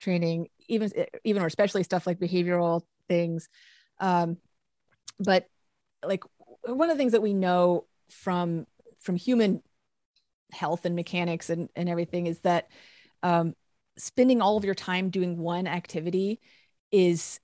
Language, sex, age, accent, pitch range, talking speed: English, female, 30-49, American, 175-205 Hz, 140 wpm